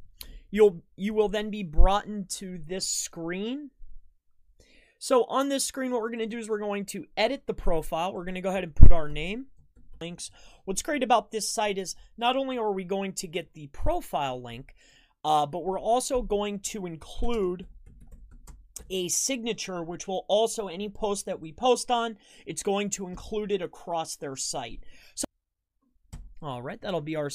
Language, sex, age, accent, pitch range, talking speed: English, male, 30-49, American, 175-230 Hz, 180 wpm